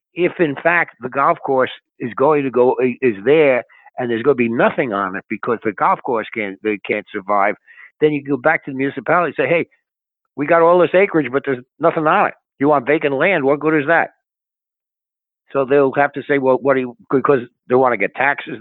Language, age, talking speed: English, 60-79, 230 wpm